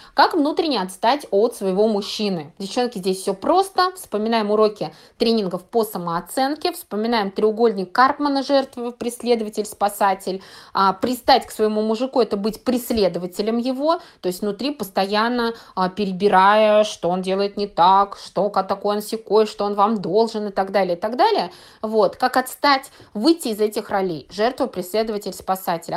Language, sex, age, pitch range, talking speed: Russian, female, 20-39, 200-270 Hz, 150 wpm